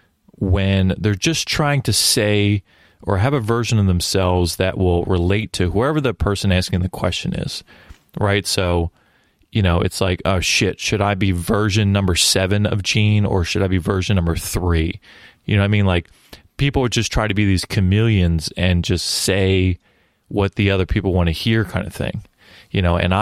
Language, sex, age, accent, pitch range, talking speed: English, male, 30-49, American, 90-105 Hz, 195 wpm